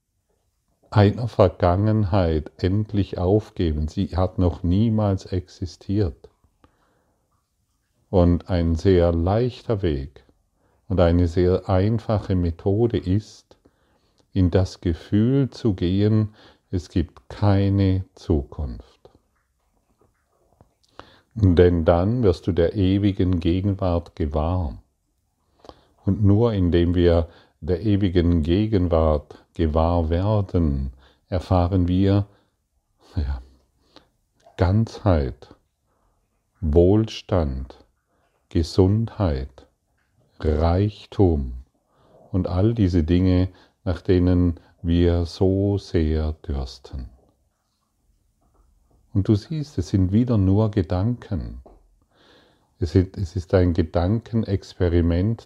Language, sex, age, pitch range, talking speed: German, male, 40-59, 85-100 Hz, 80 wpm